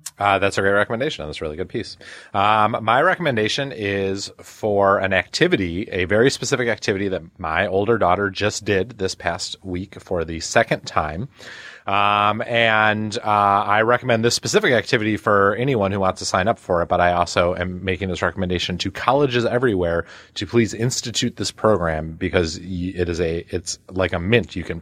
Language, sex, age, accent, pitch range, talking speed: English, male, 30-49, American, 95-120 Hz, 185 wpm